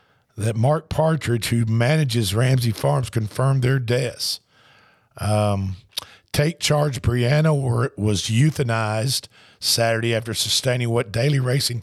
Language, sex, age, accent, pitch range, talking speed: English, male, 50-69, American, 110-135 Hz, 110 wpm